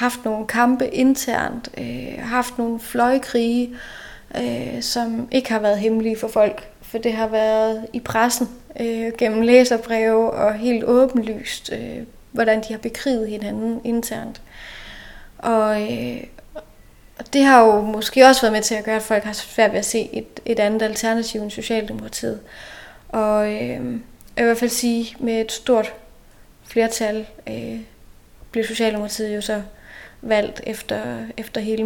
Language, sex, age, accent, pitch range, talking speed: Danish, female, 30-49, native, 220-240 Hz, 155 wpm